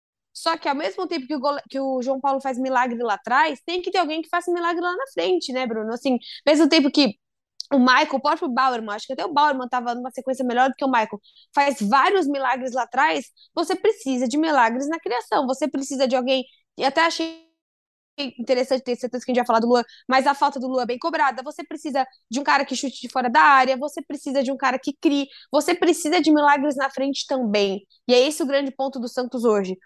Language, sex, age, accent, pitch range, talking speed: Portuguese, female, 20-39, Brazilian, 260-305 Hz, 240 wpm